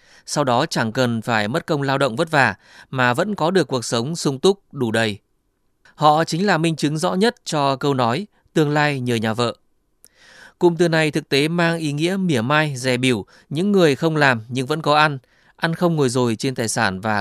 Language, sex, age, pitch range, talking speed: Vietnamese, male, 20-39, 125-165 Hz, 225 wpm